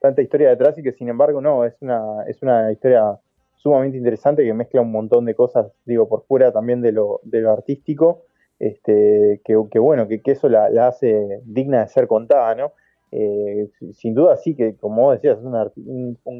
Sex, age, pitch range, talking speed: male, 20-39, 110-165 Hz, 210 wpm